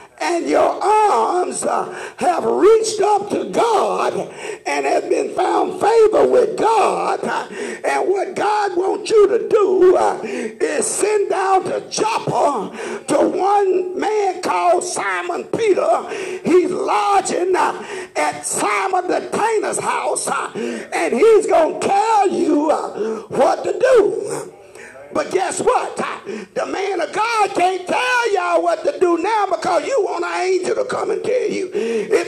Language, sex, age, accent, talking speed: English, male, 50-69, American, 145 wpm